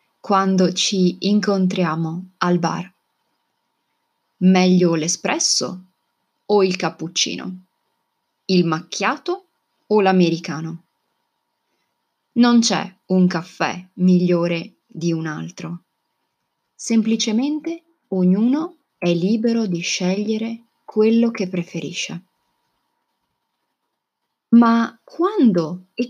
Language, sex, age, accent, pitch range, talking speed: Italian, female, 30-49, native, 175-230 Hz, 80 wpm